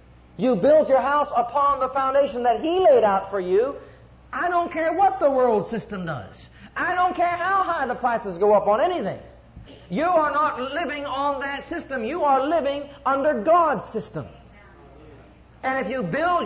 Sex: male